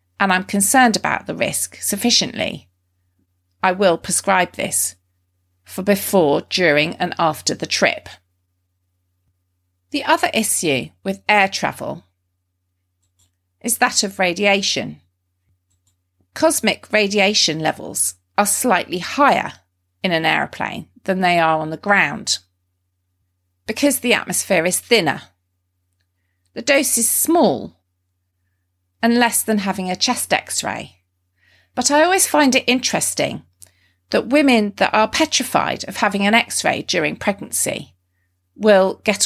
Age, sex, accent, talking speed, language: 40-59, female, British, 120 wpm, English